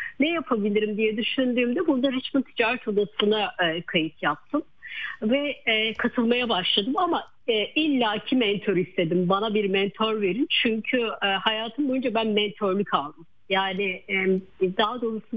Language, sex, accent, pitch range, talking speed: Turkish, female, native, 190-245 Hz, 140 wpm